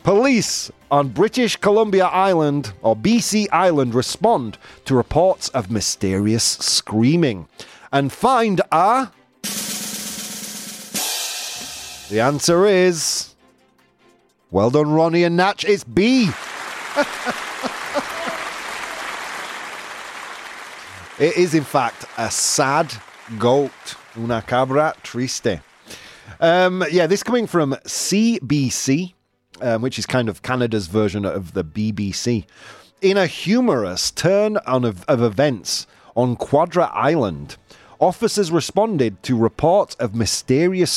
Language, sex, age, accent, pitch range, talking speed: English, male, 30-49, British, 110-185 Hz, 100 wpm